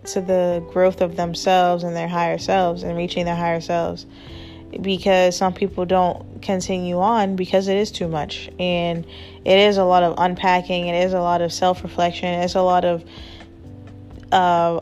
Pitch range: 175-190 Hz